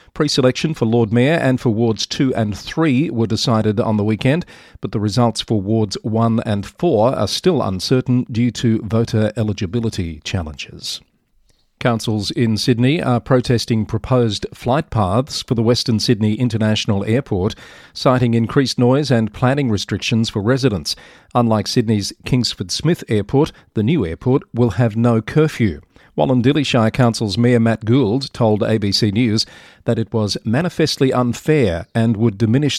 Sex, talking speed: male, 150 wpm